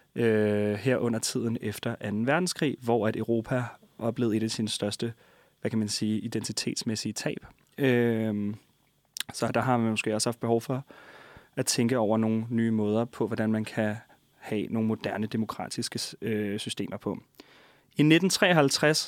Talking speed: 150 wpm